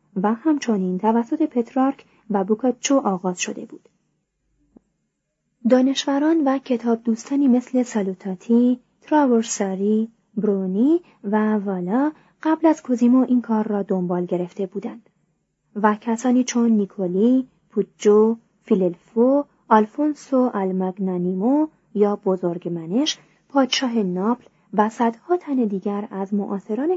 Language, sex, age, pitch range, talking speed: Persian, female, 30-49, 200-255 Hz, 100 wpm